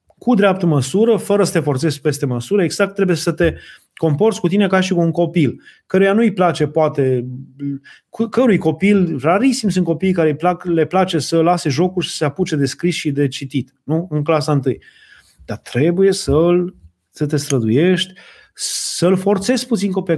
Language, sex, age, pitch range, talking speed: Romanian, male, 30-49, 150-195 Hz, 175 wpm